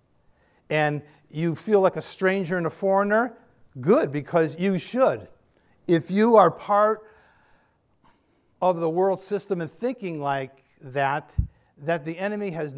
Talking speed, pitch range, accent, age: 135 wpm, 140-185 Hz, American, 50-69